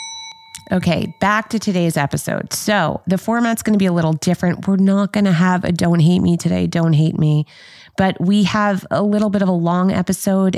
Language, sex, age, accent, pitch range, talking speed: English, female, 30-49, American, 155-205 Hz, 210 wpm